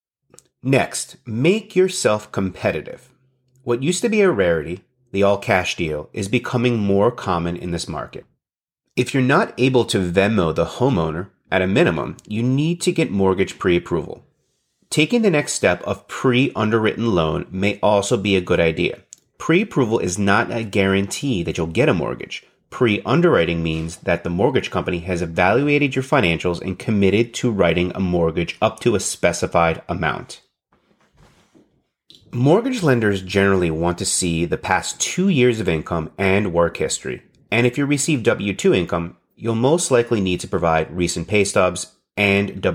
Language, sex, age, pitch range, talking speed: English, male, 30-49, 90-130 Hz, 155 wpm